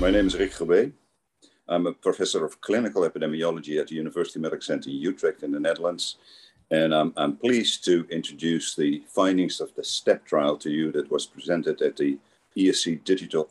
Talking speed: 185 wpm